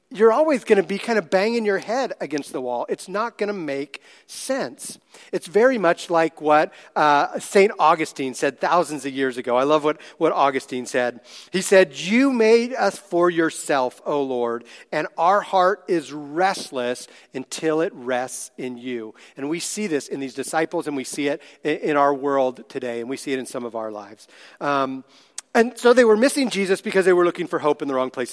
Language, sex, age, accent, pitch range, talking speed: English, male, 40-59, American, 140-220 Hz, 210 wpm